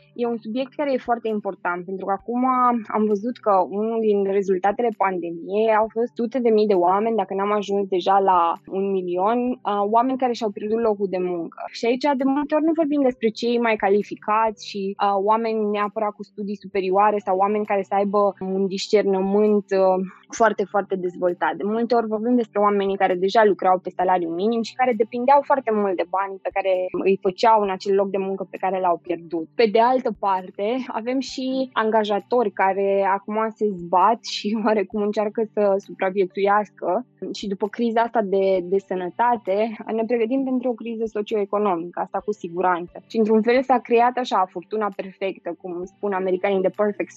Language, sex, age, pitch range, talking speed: Romanian, female, 20-39, 190-225 Hz, 180 wpm